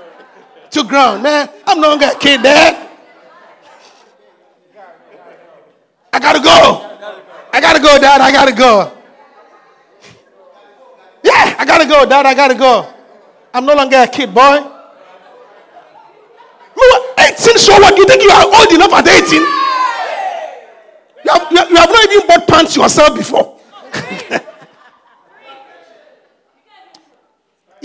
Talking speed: 125 wpm